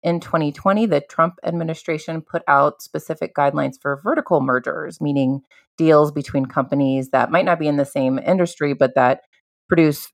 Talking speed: 160 wpm